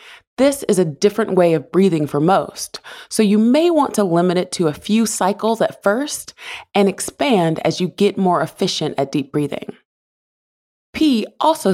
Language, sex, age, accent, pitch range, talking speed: English, female, 20-39, American, 170-235 Hz, 175 wpm